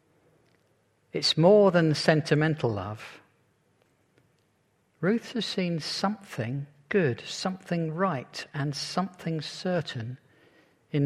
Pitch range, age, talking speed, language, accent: 130-165 Hz, 50-69, 85 wpm, English, British